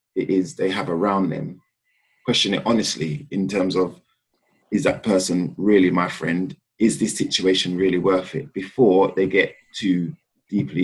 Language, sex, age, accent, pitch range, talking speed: English, male, 20-39, British, 90-120 Hz, 160 wpm